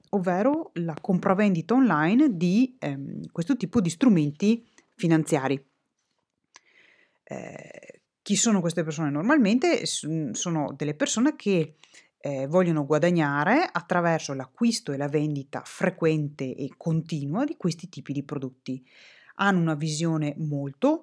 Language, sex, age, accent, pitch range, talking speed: Italian, female, 30-49, native, 150-210 Hz, 115 wpm